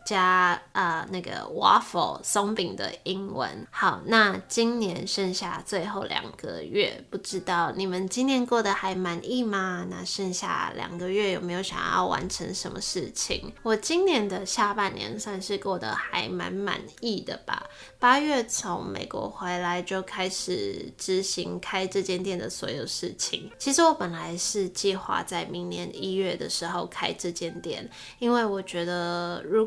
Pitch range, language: 180-220 Hz, Chinese